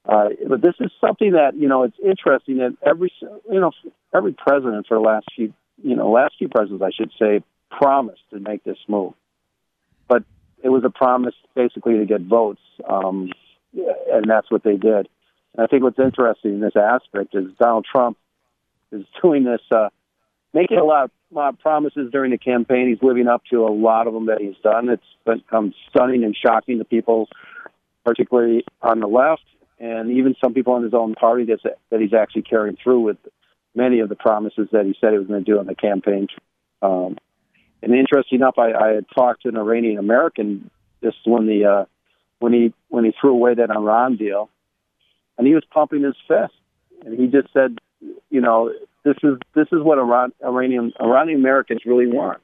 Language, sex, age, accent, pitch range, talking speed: English, male, 50-69, American, 110-130 Hz, 200 wpm